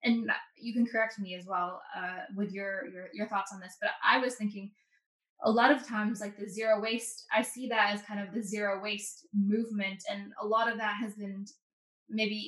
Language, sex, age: English, female, 10-29